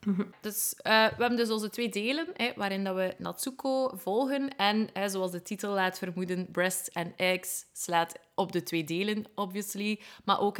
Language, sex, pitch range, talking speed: Dutch, female, 180-215 Hz, 180 wpm